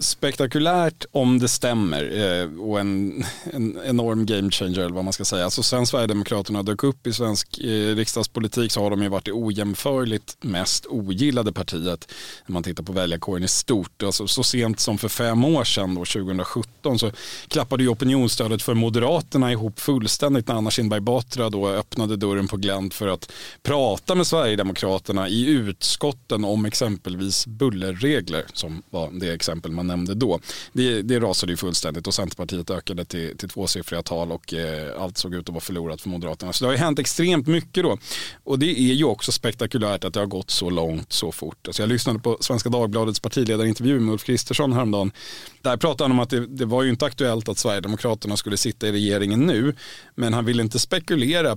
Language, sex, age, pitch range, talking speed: Swedish, male, 30-49, 95-125 Hz, 190 wpm